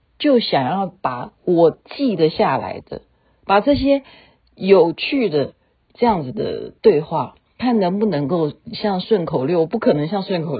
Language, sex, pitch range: Chinese, female, 165-250 Hz